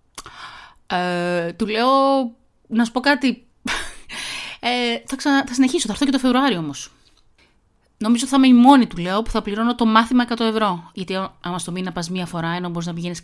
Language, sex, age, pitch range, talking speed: Greek, female, 30-49, 185-270 Hz, 185 wpm